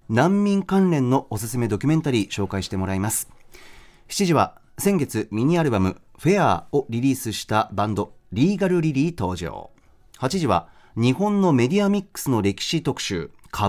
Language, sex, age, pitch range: Japanese, male, 30-49, 110-170 Hz